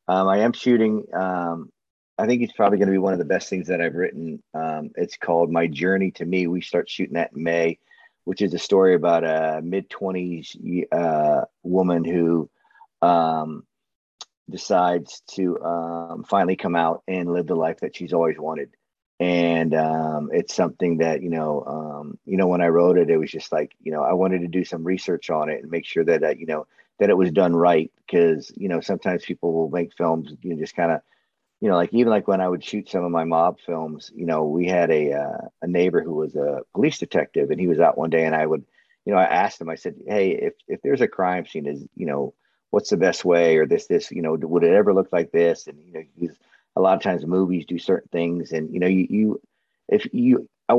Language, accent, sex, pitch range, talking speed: English, American, male, 80-95 Hz, 235 wpm